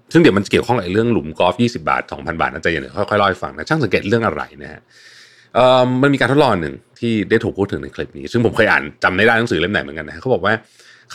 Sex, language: male, Thai